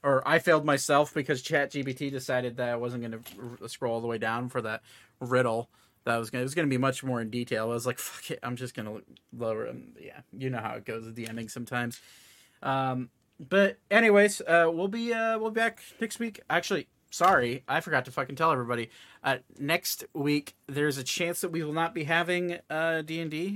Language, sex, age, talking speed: English, male, 30-49, 235 wpm